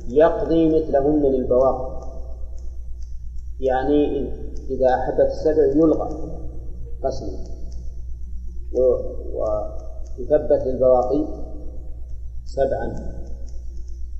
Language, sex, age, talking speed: Arabic, male, 40-59, 50 wpm